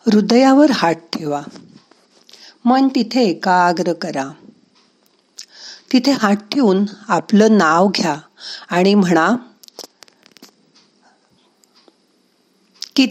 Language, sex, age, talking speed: Marathi, female, 50-69, 60 wpm